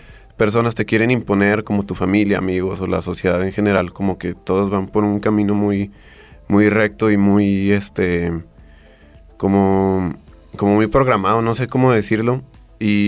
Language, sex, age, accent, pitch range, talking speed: Spanish, male, 20-39, Mexican, 95-115 Hz, 160 wpm